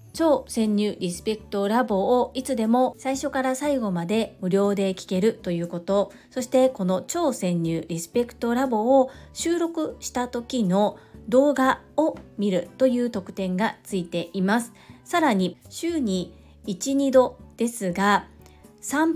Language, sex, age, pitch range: Japanese, female, 40-59, 180-250 Hz